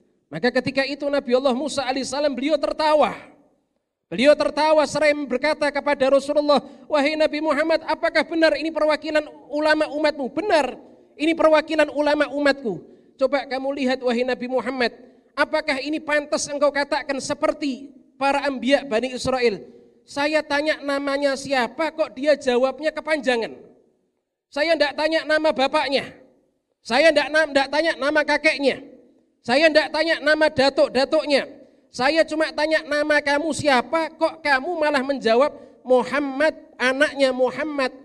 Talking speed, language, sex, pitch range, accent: 130 wpm, Indonesian, male, 230-295 Hz, native